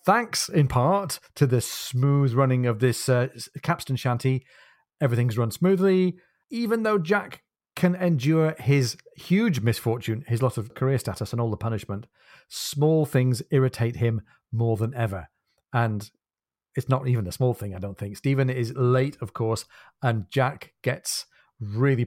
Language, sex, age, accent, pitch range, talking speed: English, male, 40-59, British, 115-140 Hz, 160 wpm